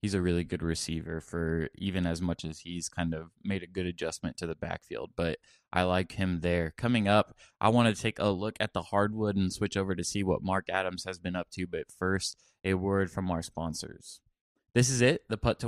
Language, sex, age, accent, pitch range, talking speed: English, male, 20-39, American, 90-110 Hz, 235 wpm